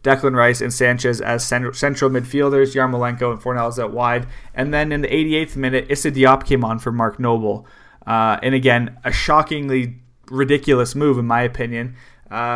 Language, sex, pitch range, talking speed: English, male, 120-135 Hz, 170 wpm